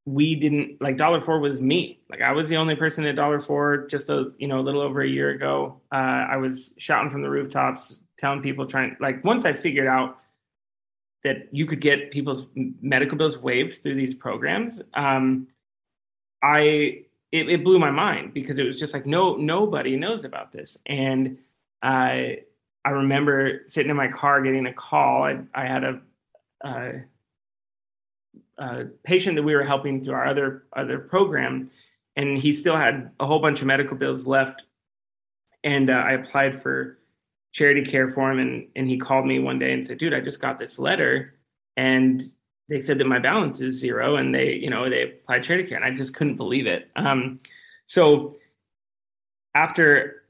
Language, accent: English, American